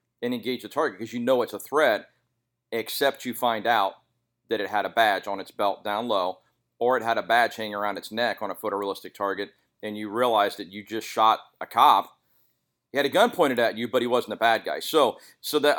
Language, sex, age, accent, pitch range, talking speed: English, male, 40-59, American, 110-125 Hz, 235 wpm